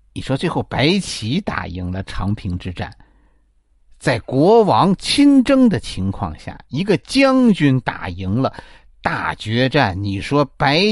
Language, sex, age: Chinese, male, 50-69